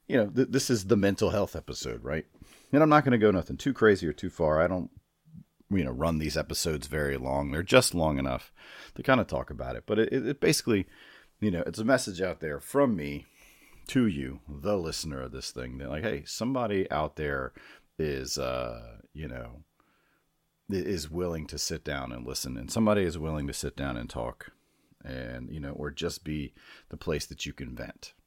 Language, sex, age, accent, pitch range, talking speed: English, male, 40-59, American, 70-95 Hz, 210 wpm